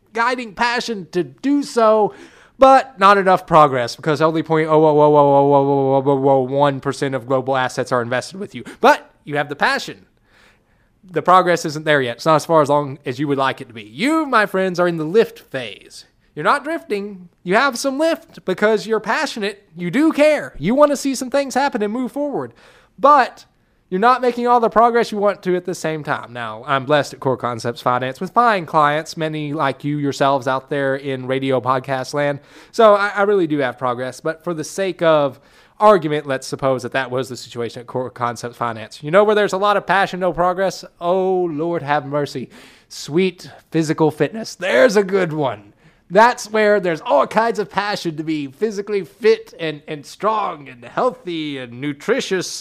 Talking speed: 205 wpm